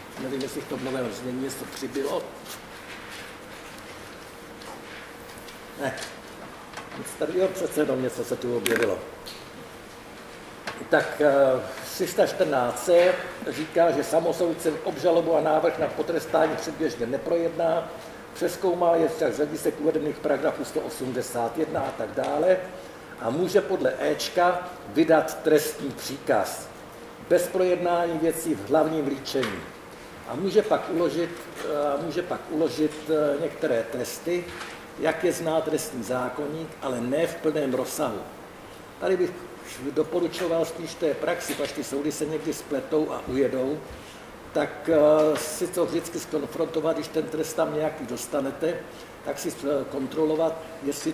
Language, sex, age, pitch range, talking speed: Czech, male, 60-79, 150-175 Hz, 115 wpm